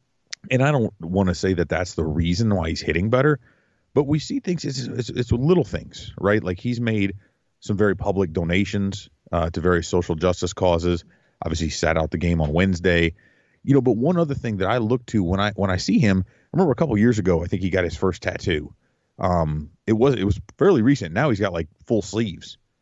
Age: 30-49